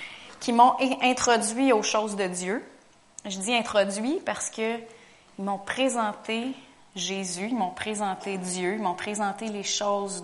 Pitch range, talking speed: 180-220 Hz, 140 wpm